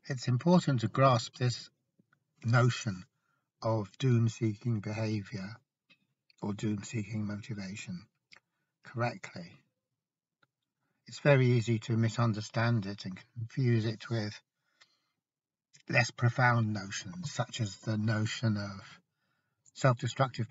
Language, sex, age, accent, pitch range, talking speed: English, male, 60-79, British, 110-135 Hz, 95 wpm